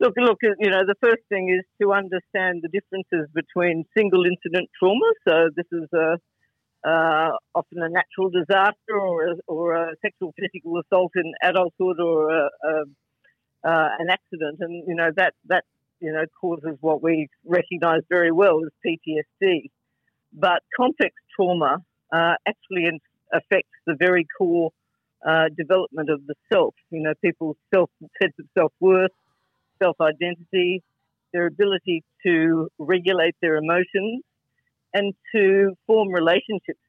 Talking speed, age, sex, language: 145 wpm, 50-69, female, English